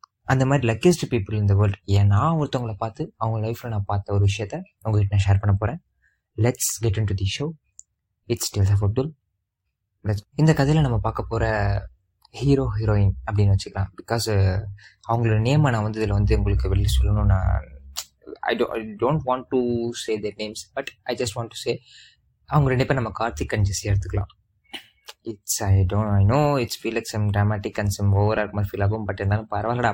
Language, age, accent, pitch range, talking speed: Tamil, 20-39, native, 100-120 Hz, 165 wpm